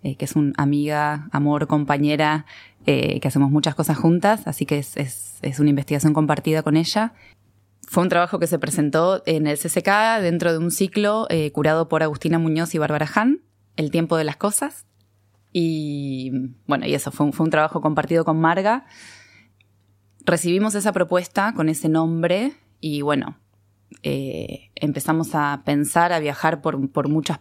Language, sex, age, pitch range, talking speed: Spanish, female, 20-39, 140-170 Hz, 170 wpm